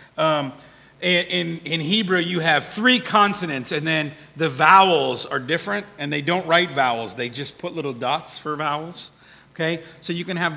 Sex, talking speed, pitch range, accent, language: male, 175 wpm, 155-195 Hz, American, English